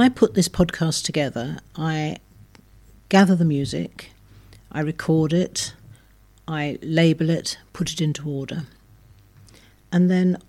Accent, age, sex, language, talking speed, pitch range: British, 50-69, female, English, 120 wpm, 110-170 Hz